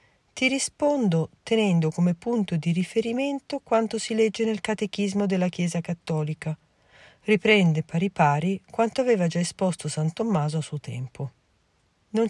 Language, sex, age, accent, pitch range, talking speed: Italian, female, 40-59, native, 155-225 Hz, 130 wpm